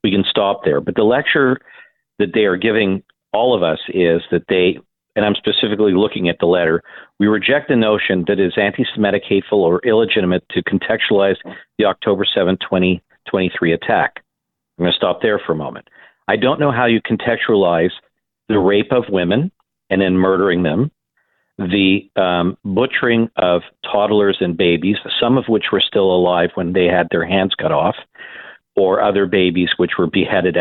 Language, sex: English, male